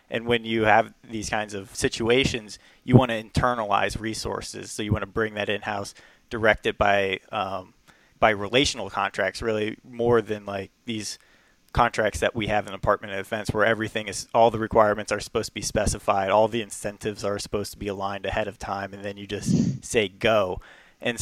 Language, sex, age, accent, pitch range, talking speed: English, male, 20-39, American, 105-115 Hz, 200 wpm